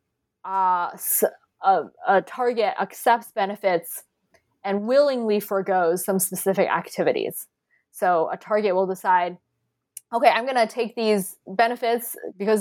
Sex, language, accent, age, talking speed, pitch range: female, English, American, 20-39, 120 wpm, 185-230 Hz